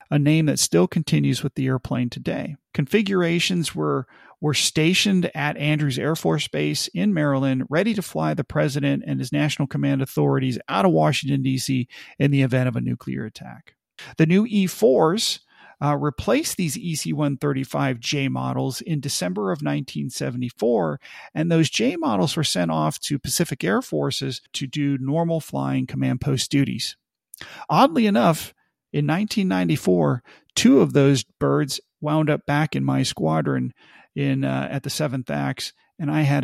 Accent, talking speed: American, 155 wpm